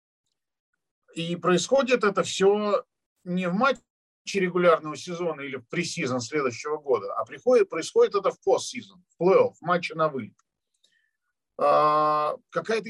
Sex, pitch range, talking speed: male, 150-225 Hz, 130 wpm